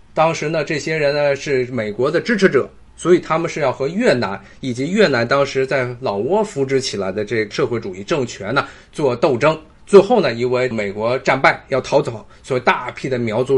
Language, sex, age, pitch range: Chinese, male, 20-39, 125-160 Hz